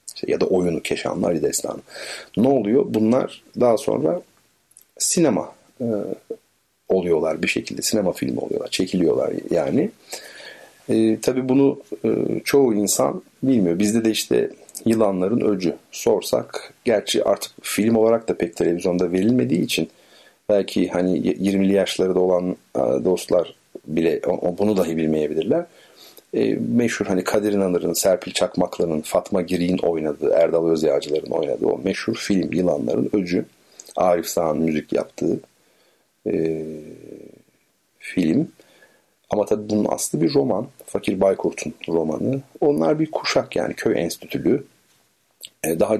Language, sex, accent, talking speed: Turkish, male, native, 115 wpm